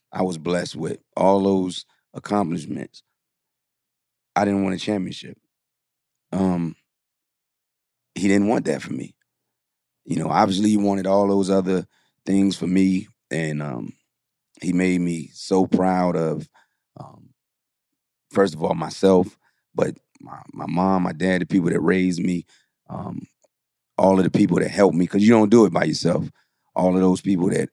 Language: English